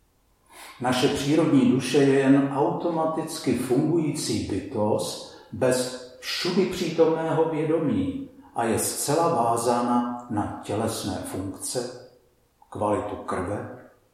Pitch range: 115-140 Hz